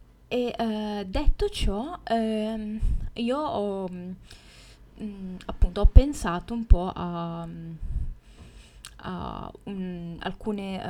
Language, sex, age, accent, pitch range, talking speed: Italian, female, 10-29, native, 175-215 Hz, 95 wpm